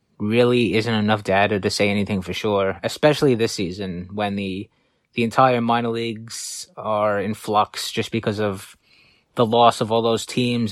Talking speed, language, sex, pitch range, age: 170 wpm, English, male, 100-120 Hz, 20-39